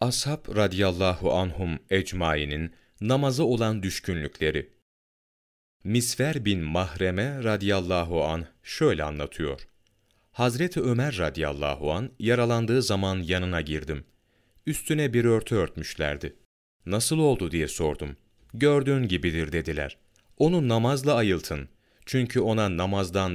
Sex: male